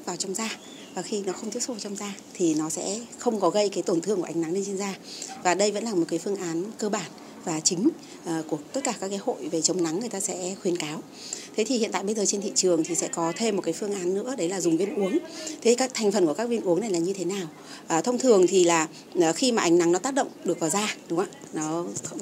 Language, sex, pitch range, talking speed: Vietnamese, female, 170-225 Hz, 290 wpm